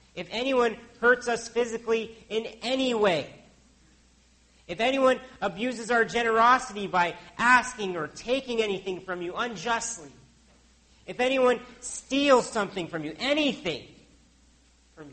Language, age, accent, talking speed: English, 40-59, American, 115 wpm